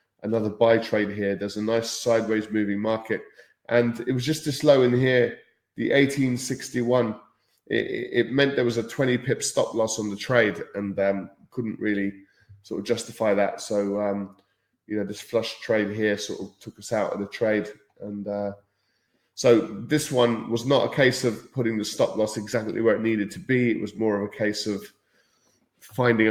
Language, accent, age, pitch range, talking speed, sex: English, British, 20-39, 105-120 Hz, 195 wpm, male